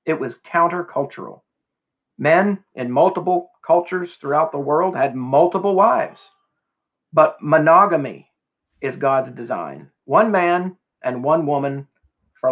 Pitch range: 145-175 Hz